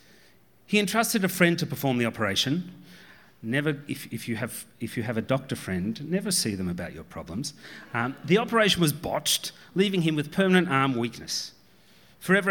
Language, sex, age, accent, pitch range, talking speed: English, male, 40-59, Australian, 130-190 Hz, 165 wpm